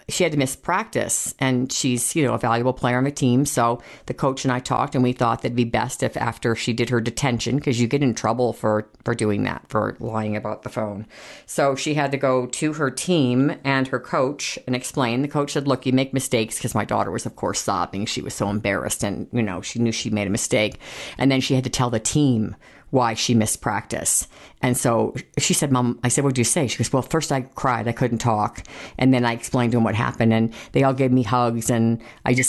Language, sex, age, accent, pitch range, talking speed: English, female, 40-59, American, 115-130 Hz, 250 wpm